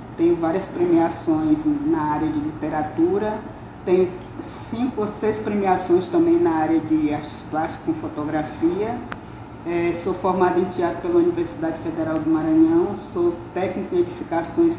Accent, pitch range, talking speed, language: Brazilian, 165-270 Hz, 140 wpm, Portuguese